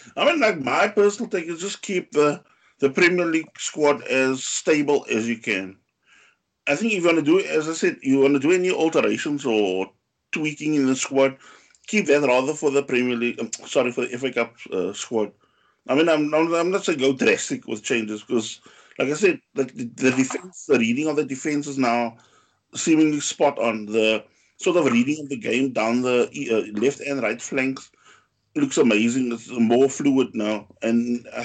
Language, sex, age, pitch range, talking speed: English, male, 50-69, 120-150 Hz, 200 wpm